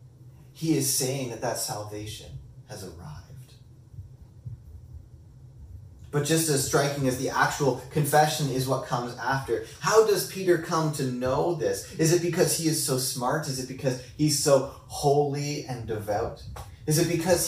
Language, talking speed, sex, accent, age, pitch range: English, 155 wpm, male, American, 30-49, 120-145 Hz